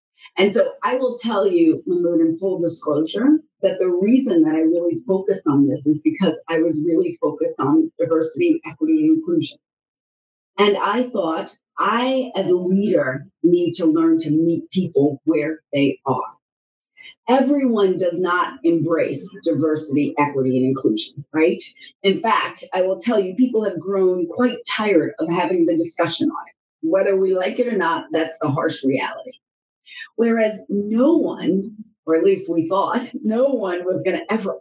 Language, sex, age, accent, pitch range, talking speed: English, female, 40-59, American, 170-270 Hz, 165 wpm